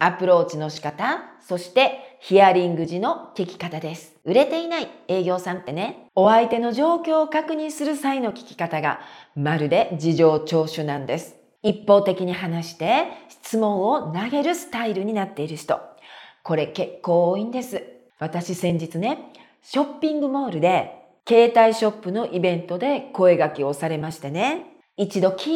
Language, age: Japanese, 40-59